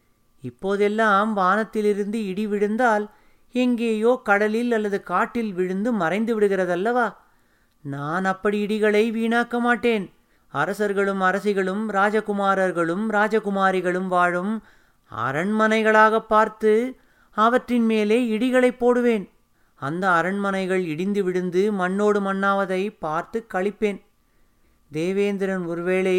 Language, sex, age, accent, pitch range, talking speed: Tamil, male, 30-49, native, 185-220 Hz, 85 wpm